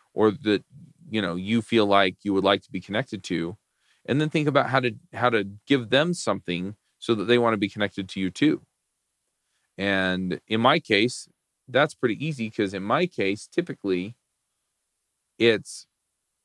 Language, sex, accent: English, male, American